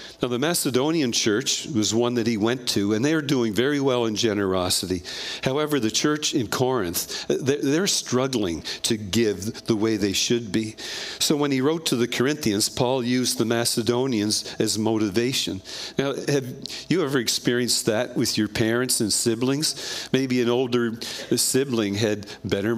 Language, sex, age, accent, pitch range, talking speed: English, male, 50-69, American, 110-135 Hz, 165 wpm